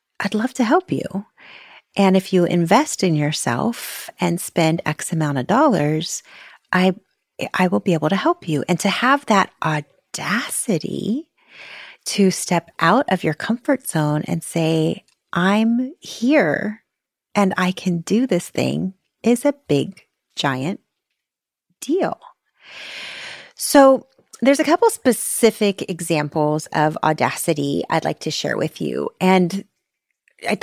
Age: 30-49